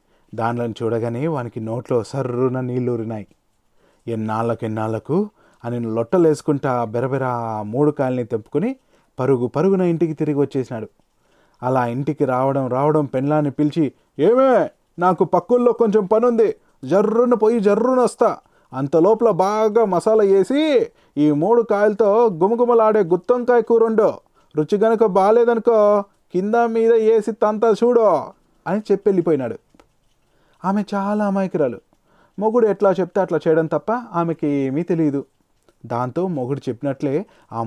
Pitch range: 130-205 Hz